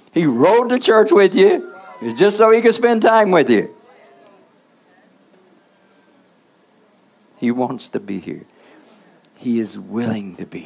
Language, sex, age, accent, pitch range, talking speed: English, male, 60-79, American, 110-155 Hz, 135 wpm